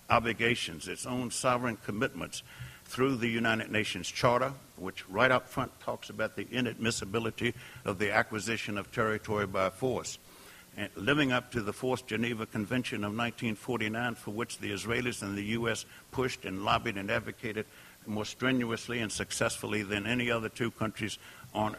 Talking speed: 155 wpm